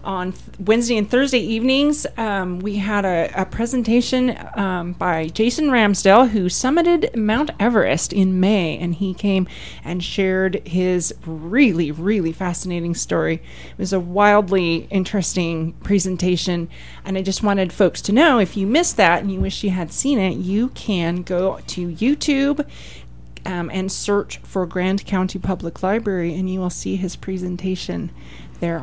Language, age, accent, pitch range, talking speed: English, 30-49, American, 165-205 Hz, 155 wpm